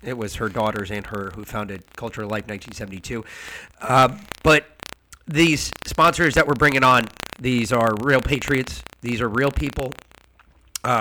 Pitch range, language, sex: 110-140 Hz, English, male